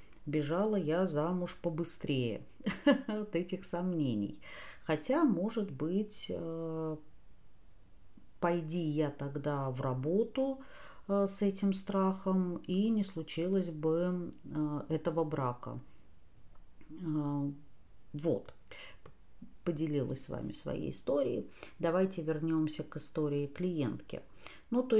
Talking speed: 90 wpm